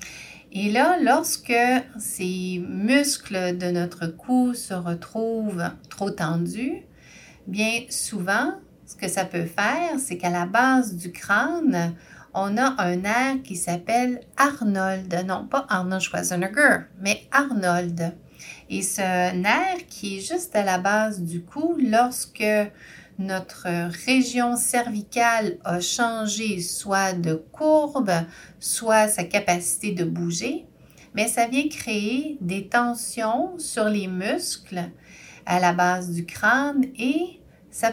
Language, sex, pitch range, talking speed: French, female, 180-255 Hz, 125 wpm